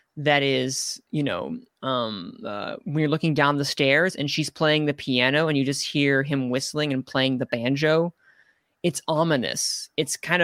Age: 20-39